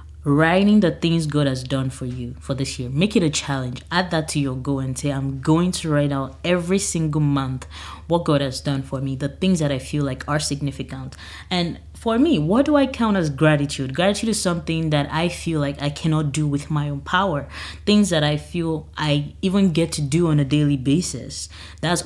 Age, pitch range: 20-39, 140-170 Hz